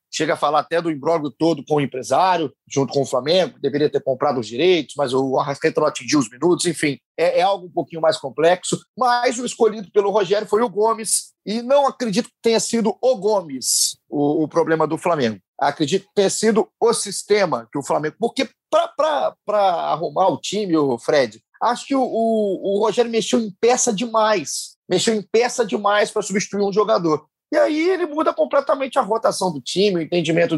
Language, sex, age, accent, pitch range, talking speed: Portuguese, male, 30-49, Brazilian, 160-230 Hz, 190 wpm